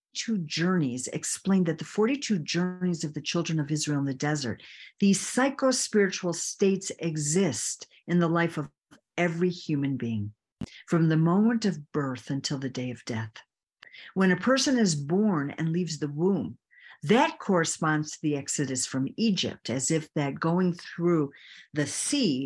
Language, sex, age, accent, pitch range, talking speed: English, female, 50-69, American, 150-190 Hz, 160 wpm